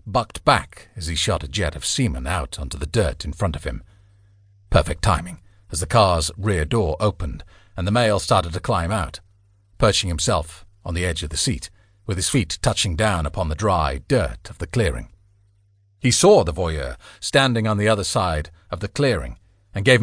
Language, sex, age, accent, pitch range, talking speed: English, male, 40-59, British, 85-105 Hz, 200 wpm